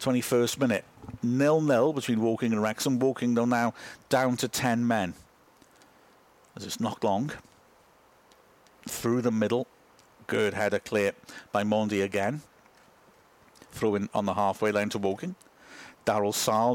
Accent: British